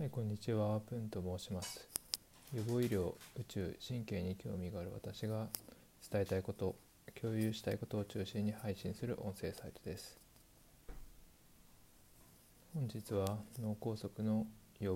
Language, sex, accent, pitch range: Japanese, male, native, 95-115 Hz